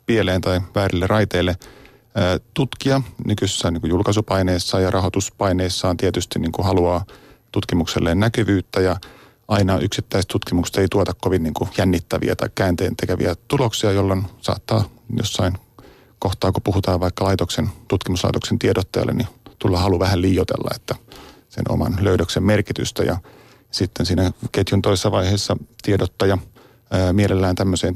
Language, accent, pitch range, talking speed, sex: Finnish, native, 90-115 Hz, 120 wpm, male